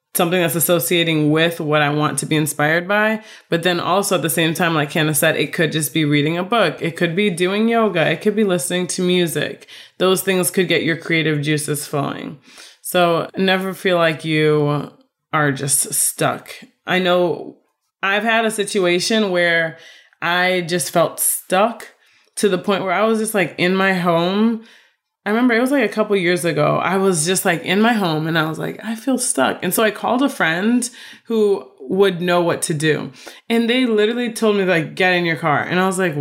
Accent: American